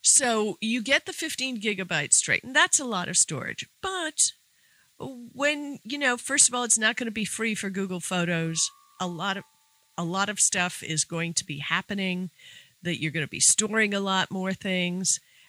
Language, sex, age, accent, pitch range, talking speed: English, female, 50-69, American, 170-230 Hz, 200 wpm